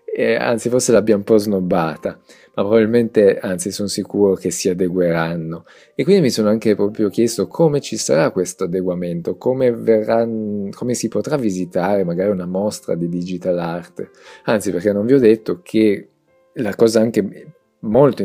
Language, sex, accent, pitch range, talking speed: Italian, male, native, 90-115 Hz, 165 wpm